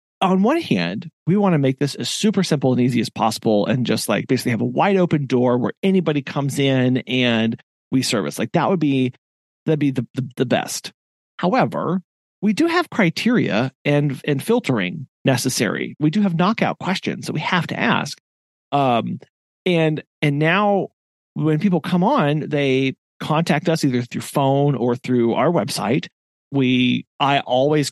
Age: 40-59